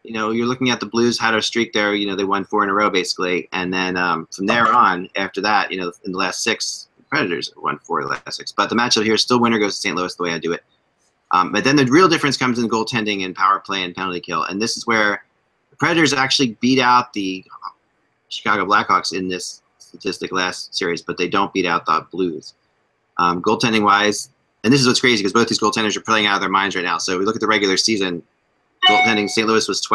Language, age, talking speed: English, 30-49, 255 wpm